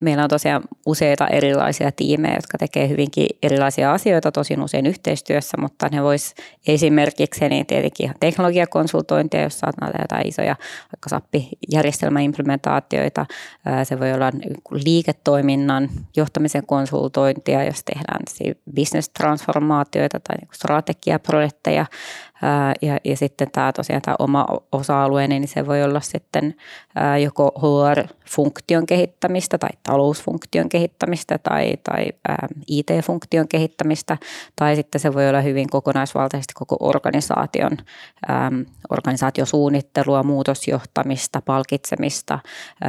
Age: 20-39